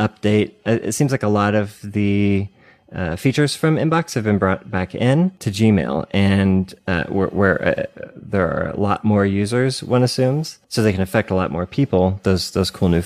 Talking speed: 200 wpm